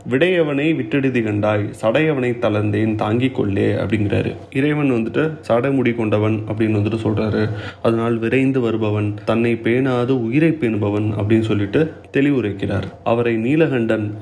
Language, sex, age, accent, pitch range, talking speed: Tamil, male, 30-49, native, 105-140 Hz, 110 wpm